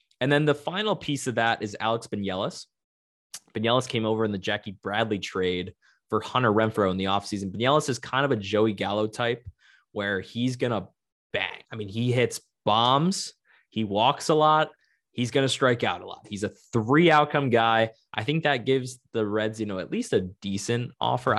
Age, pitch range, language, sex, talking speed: 20-39, 105-140 Hz, English, male, 200 wpm